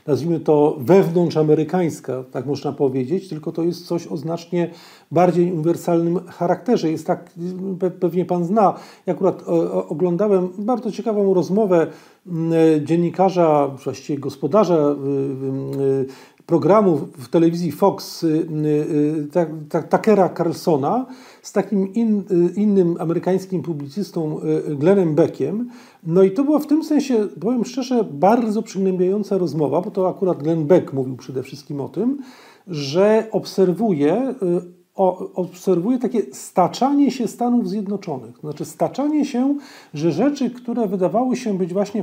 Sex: male